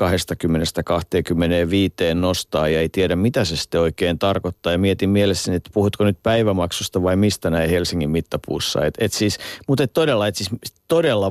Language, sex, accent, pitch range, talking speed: Finnish, male, native, 85-105 Hz, 160 wpm